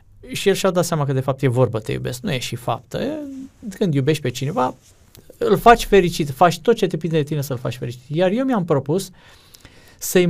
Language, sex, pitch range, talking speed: Romanian, male, 120-155 Hz, 220 wpm